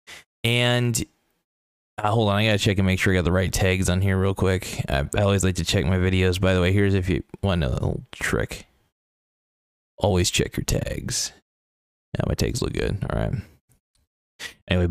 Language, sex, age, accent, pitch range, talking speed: English, male, 20-39, American, 90-110 Hz, 195 wpm